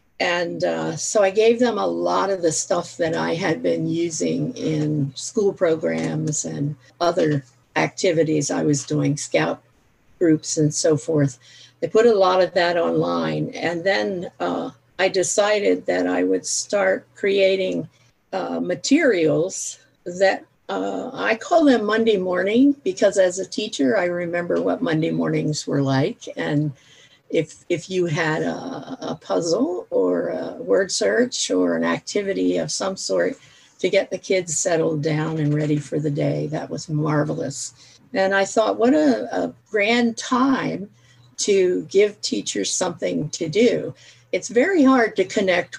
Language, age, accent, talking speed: English, 50-69, American, 155 wpm